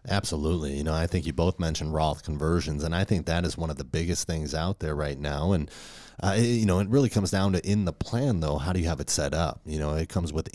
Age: 30-49